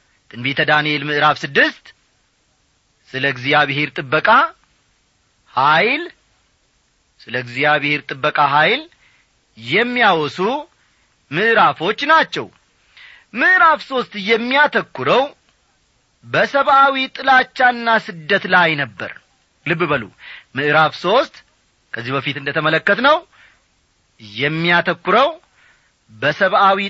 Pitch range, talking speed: 145-240 Hz, 75 wpm